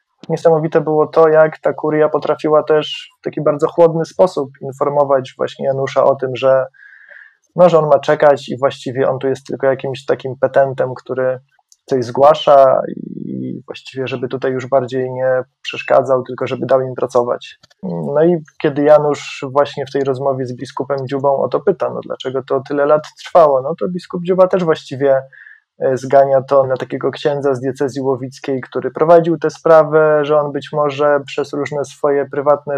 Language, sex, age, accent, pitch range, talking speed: Polish, male, 20-39, native, 135-150 Hz, 170 wpm